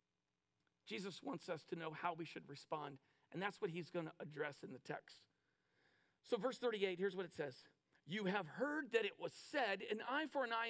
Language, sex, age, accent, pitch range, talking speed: English, male, 50-69, American, 170-260 Hz, 215 wpm